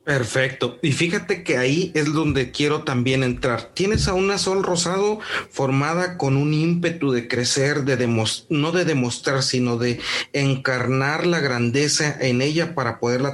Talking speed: 155 wpm